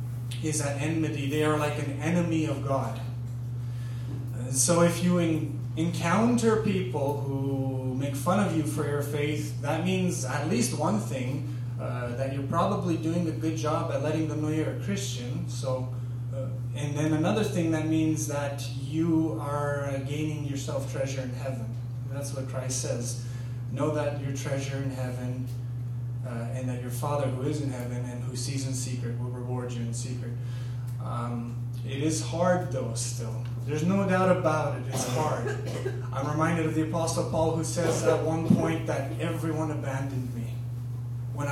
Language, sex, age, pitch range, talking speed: English, male, 20-39, 120-150 Hz, 170 wpm